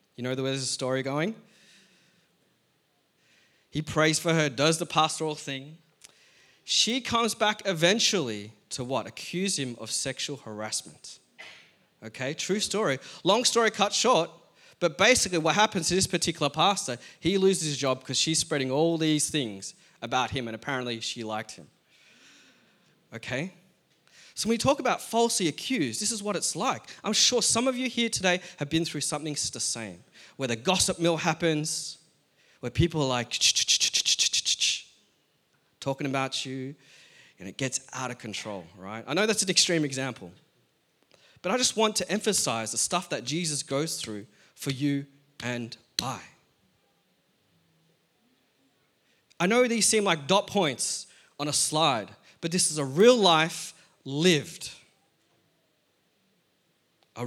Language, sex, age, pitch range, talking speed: English, male, 20-39, 130-190 Hz, 150 wpm